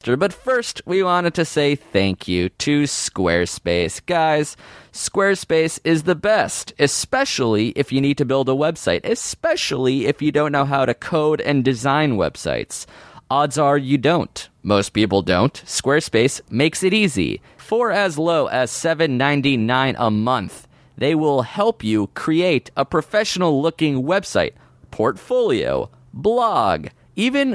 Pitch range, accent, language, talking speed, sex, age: 125-170 Hz, American, English, 140 wpm, male, 30-49